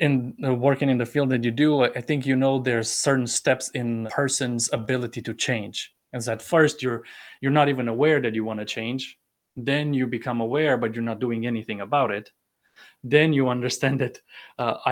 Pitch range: 110-130 Hz